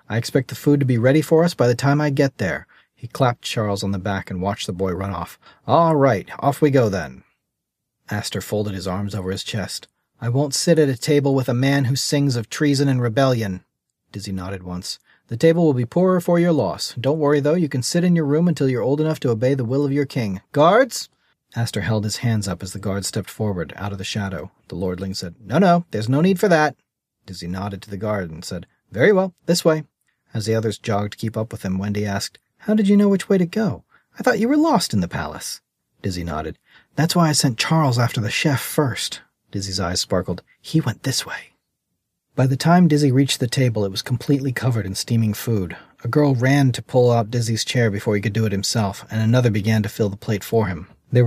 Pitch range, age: 100-145 Hz, 40-59